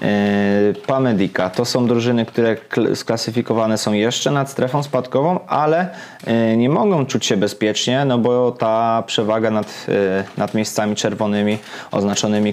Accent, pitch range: native, 105-125 Hz